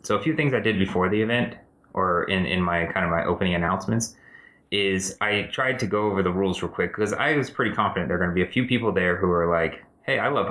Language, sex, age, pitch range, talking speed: English, male, 30-49, 85-105 Hz, 275 wpm